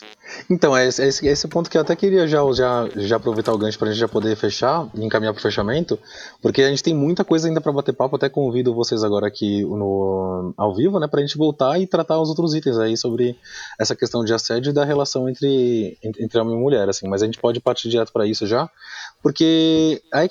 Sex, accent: male, Brazilian